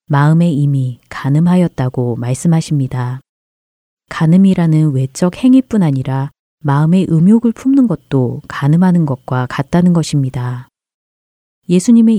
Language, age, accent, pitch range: Korean, 30-49, native, 130-180 Hz